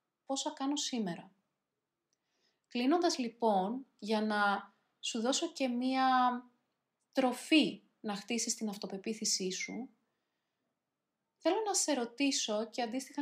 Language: Greek